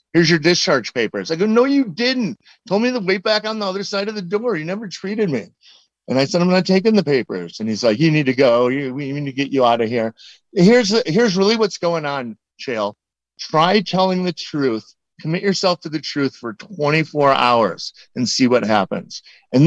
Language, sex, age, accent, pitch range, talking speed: English, male, 40-59, American, 135-190 Hz, 220 wpm